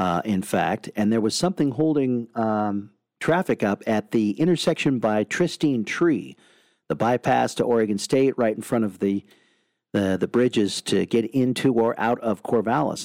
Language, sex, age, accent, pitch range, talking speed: English, male, 50-69, American, 105-135 Hz, 170 wpm